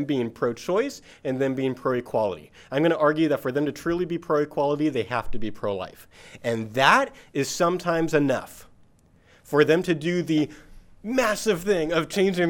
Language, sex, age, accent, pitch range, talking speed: English, male, 30-49, American, 130-170 Hz, 175 wpm